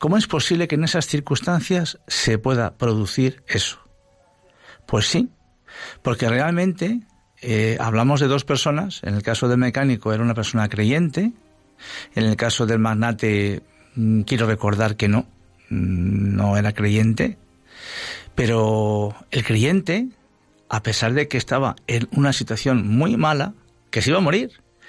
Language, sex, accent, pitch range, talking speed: Spanish, male, Spanish, 110-135 Hz, 140 wpm